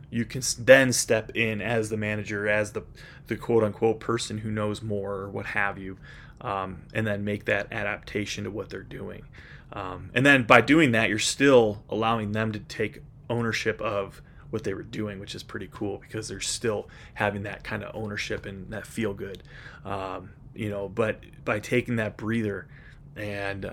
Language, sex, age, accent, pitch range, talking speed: English, male, 20-39, American, 105-125 Hz, 185 wpm